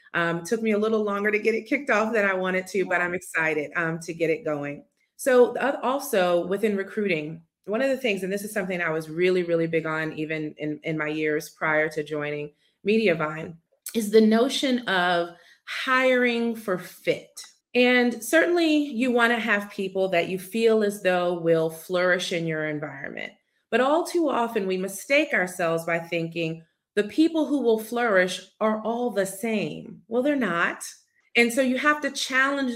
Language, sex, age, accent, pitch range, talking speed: English, female, 30-49, American, 175-245 Hz, 185 wpm